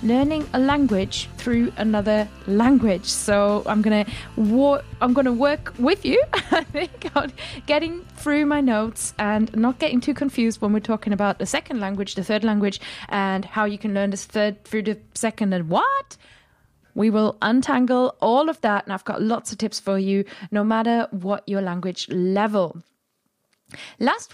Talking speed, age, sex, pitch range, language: 175 wpm, 20-39, female, 215-280 Hz, English